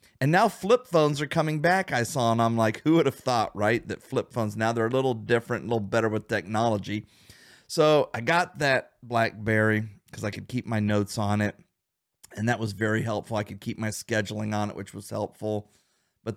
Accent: American